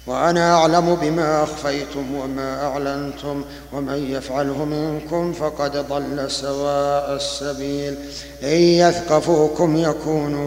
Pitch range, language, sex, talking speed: 140-155 Hz, Arabic, male, 90 wpm